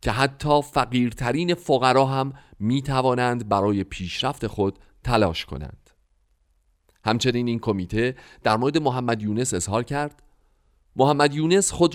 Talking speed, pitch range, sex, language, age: 115 wpm, 100-140 Hz, male, Persian, 40-59